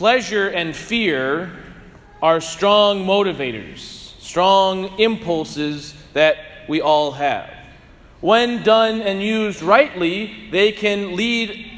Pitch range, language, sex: 165-230 Hz, English, male